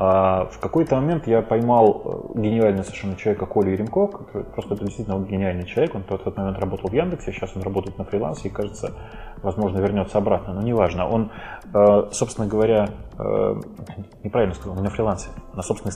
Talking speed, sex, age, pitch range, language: 170 wpm, male, 20-39, 95-115 Hz, Ukrainian